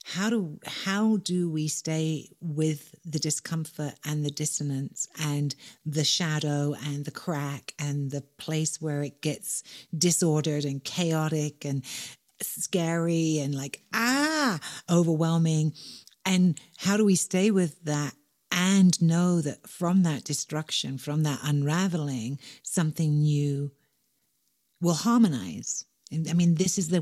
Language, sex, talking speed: English, female, 130 wpm